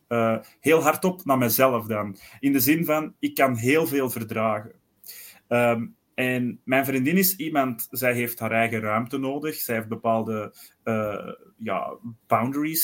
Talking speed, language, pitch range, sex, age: 155 wpm, Dutch, 115-150 Hz, male, 30-49